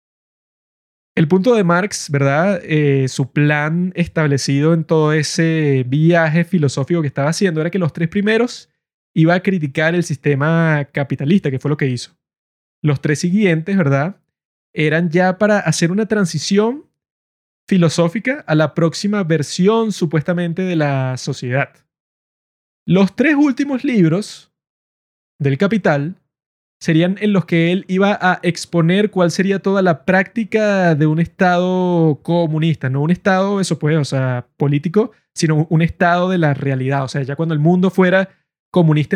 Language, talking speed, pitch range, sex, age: Spanish, 140 wpm, 150-185 Hz, male, 20-39